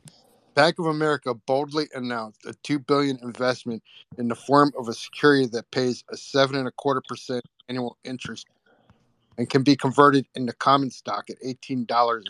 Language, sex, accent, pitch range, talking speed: English, male, American, 120-140 Hz, 145 wpm